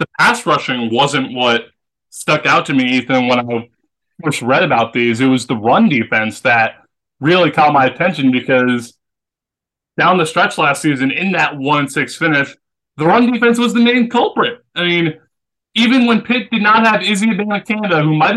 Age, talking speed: 20-39, 180 wpm